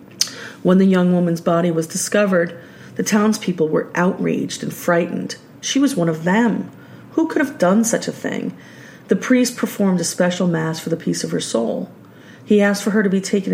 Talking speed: 195 wpm